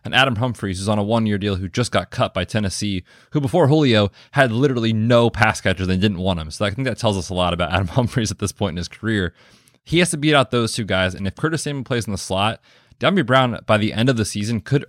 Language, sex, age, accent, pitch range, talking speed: English, male, 20-39, American, 95-125 Hz, 275 wpm